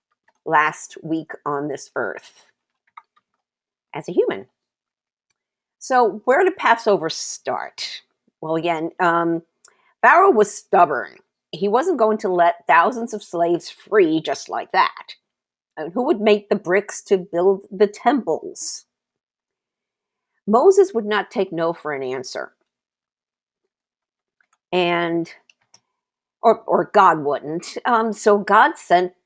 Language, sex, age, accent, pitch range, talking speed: English, female, 50-69, American, 170-255 Hz, 120 wpm